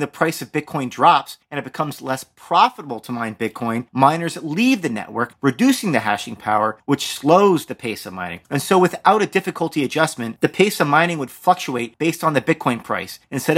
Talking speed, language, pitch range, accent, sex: 200 wpm, English, 120-160 Hz, American, male